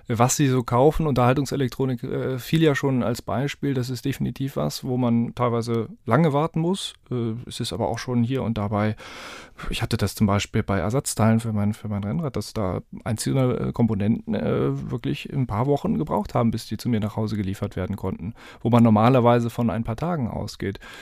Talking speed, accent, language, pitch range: 195 wpm, German, German, 110-140 Hz